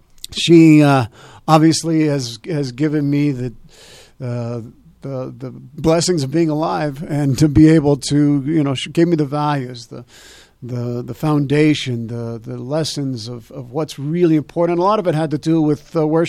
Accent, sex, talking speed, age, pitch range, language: American, male, 185 wpm, 50-69, 140-165 Hz, English